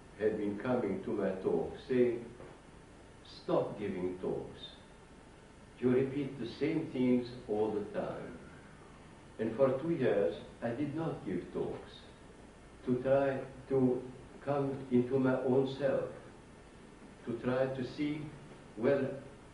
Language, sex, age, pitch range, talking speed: English, male, 60-79, 120-140 Hz, 125 wpm